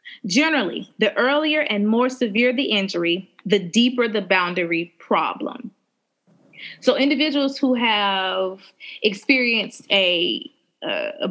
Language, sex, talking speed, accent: English, female, 105 wpm, American